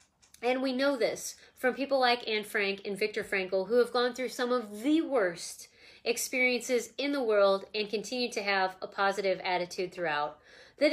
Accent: American